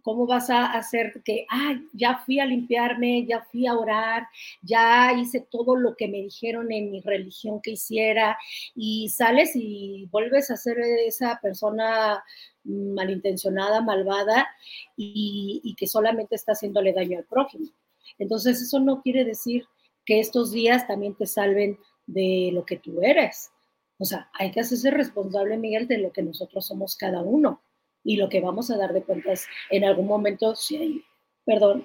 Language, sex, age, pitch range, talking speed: Spanish, female, 40-59, 195-245 Hz, 170 wpm